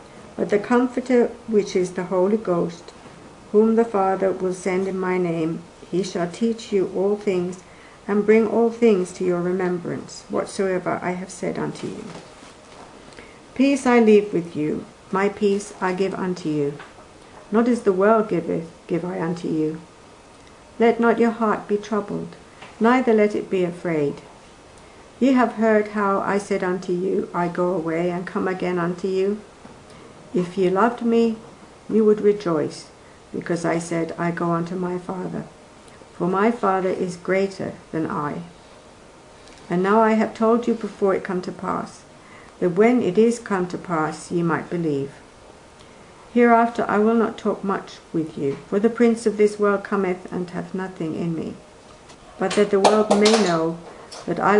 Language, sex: English, female